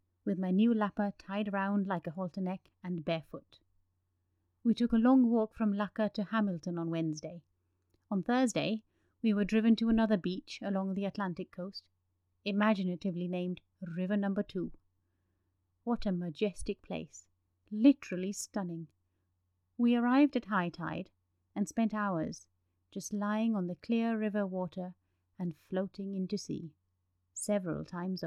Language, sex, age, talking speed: English, female, 30-49, 140 wpm